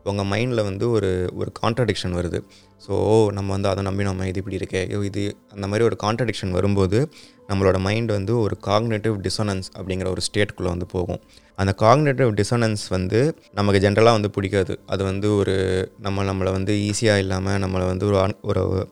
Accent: native